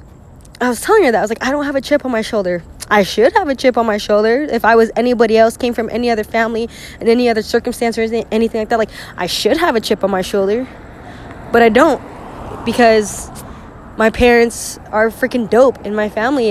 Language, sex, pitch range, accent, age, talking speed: English, female, 220-265 Hz, American, 10-29, 225 wpm